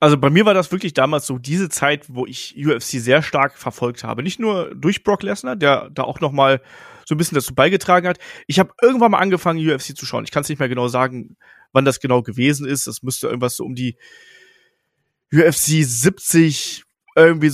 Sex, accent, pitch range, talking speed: male, German, 135-180 Hz, 210 wpm